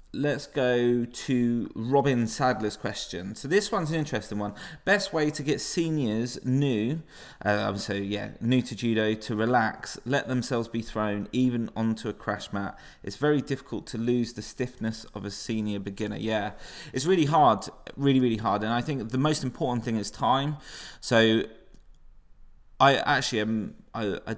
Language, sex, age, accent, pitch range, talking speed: English, male, 20-39, British, 105-135 Hz, 165 wpm